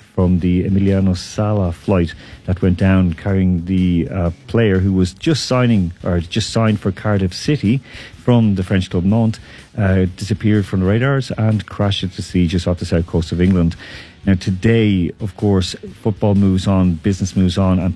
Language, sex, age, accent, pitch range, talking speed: English, male, 40-59, Irish, 90-110 Hz, 185 wpm